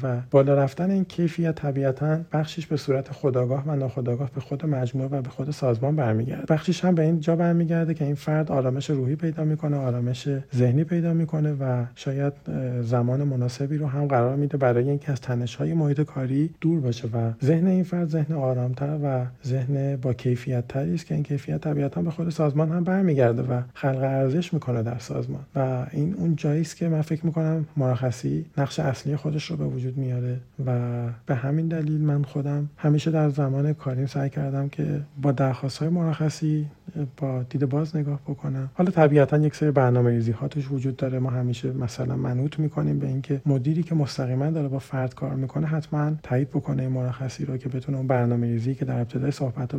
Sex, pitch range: male, 130-155 Hz